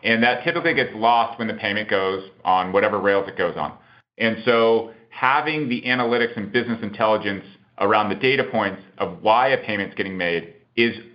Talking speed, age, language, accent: 185 wpm, 40-59, English, American